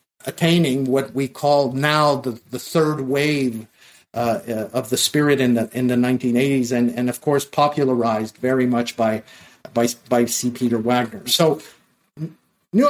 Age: 50-69